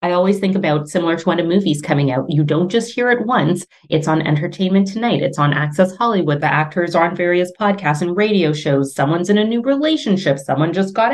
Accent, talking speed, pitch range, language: American, 225 wpm, 155-195 Hz, English